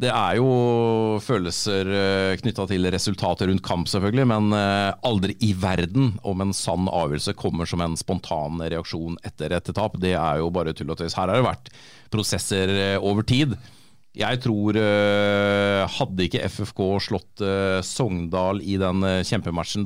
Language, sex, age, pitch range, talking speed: English, male, 40-59, 95-125 Hz, 155 wpm